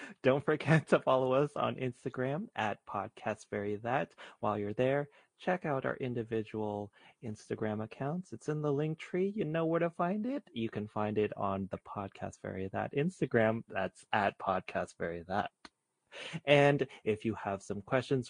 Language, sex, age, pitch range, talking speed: English, male, 30-49, 110-145 Hz, 160 wpm